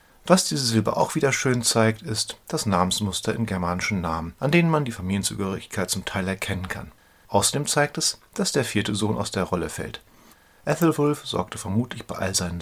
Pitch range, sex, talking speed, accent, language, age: 95-115 Hz, male, 185 wpm, German, German, 40-59